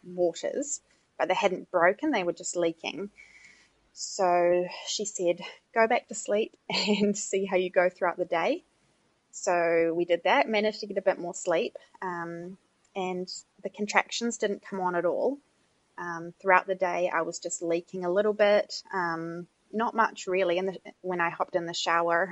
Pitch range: 170-200 Hz